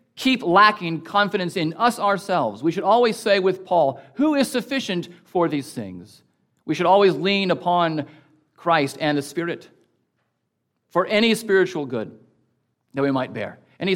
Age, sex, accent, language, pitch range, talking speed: 40-59, male, American, English, 140-200 Hz, 155 wpm